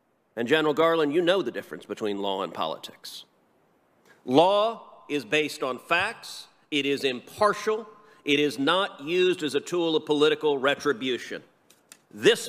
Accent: American